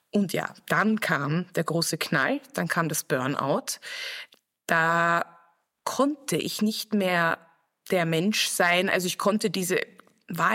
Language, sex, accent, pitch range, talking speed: German, female, German, 160-205 Hz, 135 wpm